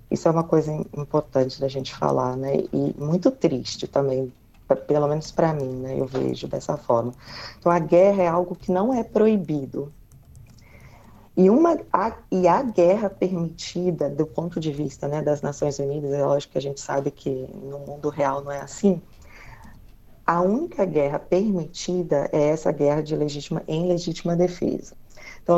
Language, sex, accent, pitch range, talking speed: Portuguese, female, Brazilian, 145-175 Hz, 170 wpm